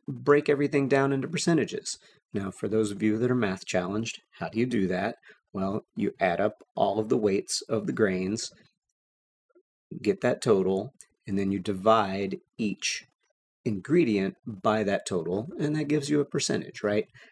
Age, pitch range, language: 40-59, 95-120 Hz, English